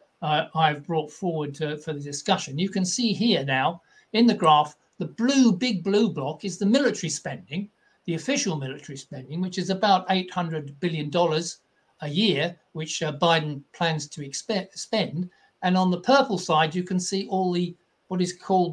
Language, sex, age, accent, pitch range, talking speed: English, male, 60-79, British, 155-195 Hz, 175 wpm